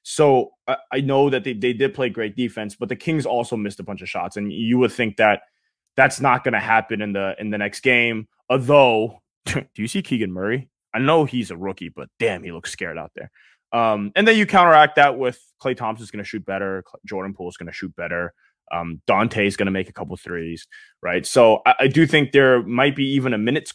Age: 20-39